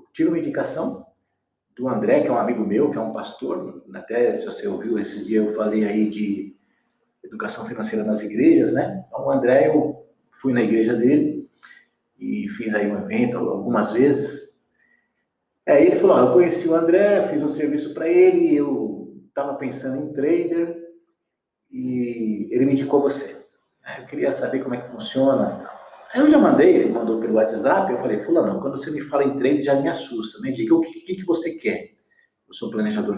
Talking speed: 200 wpm